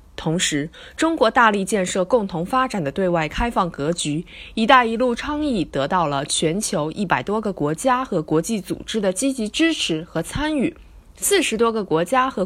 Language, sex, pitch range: Chinese, female, 160-265 Hz